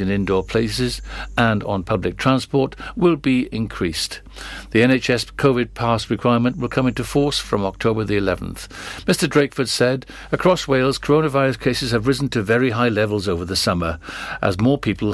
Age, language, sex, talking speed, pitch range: 60-79, English, male, 165 wpm, 105-135 Hz